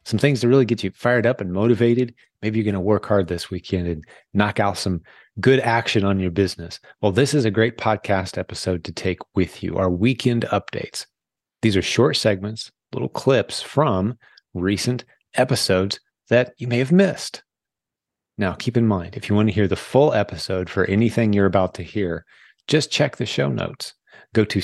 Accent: American